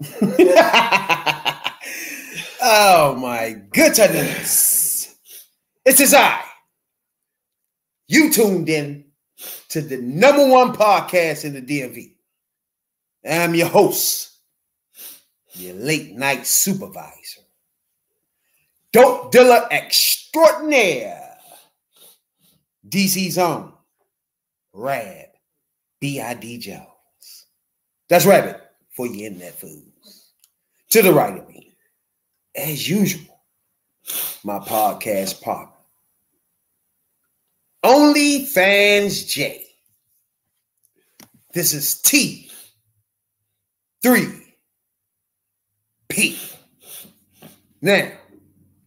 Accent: American